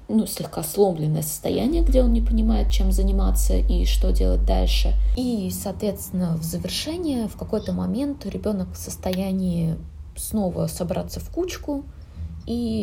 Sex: female